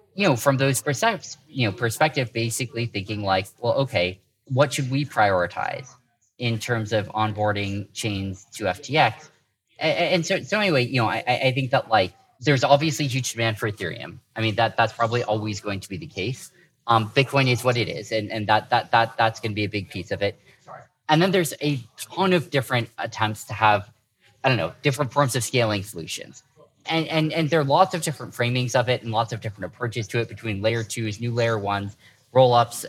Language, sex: English, male